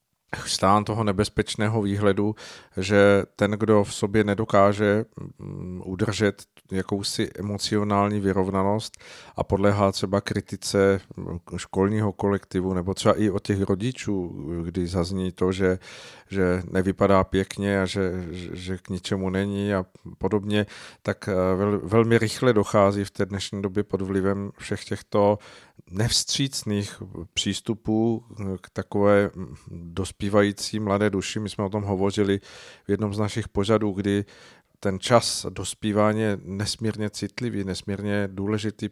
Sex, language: male, Czech